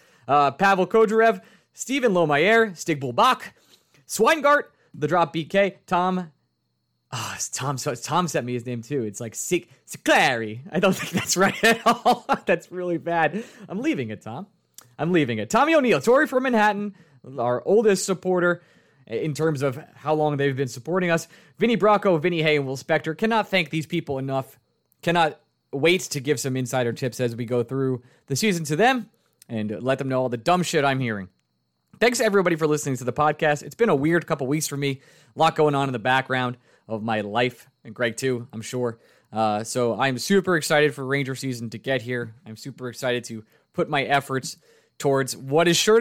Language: English